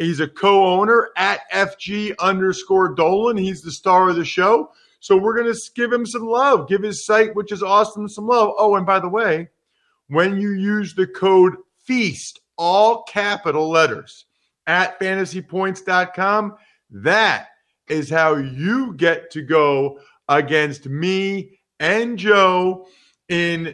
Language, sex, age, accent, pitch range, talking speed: English, male, 40-59, American, 160-195 Hz, 145 wpm